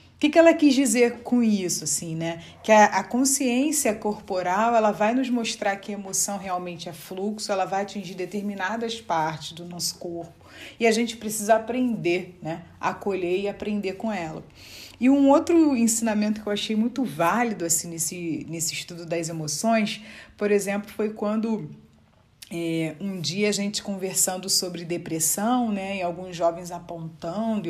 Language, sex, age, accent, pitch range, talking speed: Portuguese, female, 40-59, Brazilian, 170-215 Hz, 160 wpm